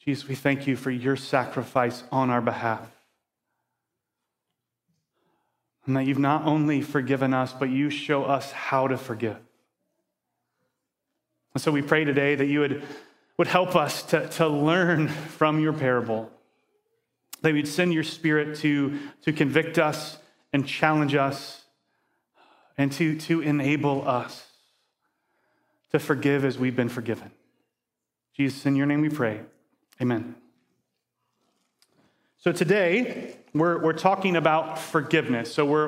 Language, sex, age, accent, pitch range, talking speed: English, male, 30-49, American, 145-185 Hz, 135 wpm